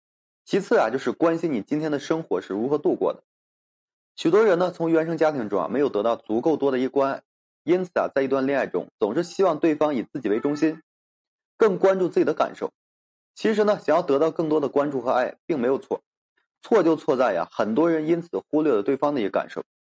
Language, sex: Chinese, male